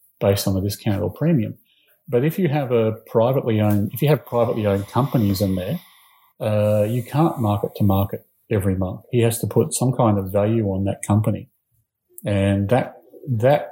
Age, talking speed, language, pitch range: 40-59, 190 wpm, English, 105-125 Hz